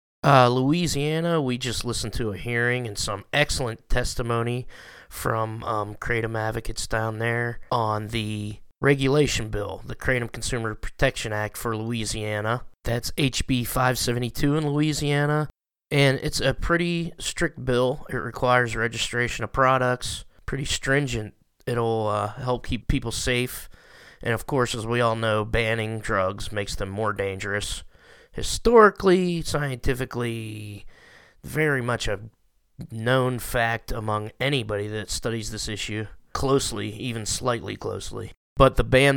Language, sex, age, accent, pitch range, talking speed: English, male, 20-39, American, 110-130 Hz, 130 wpm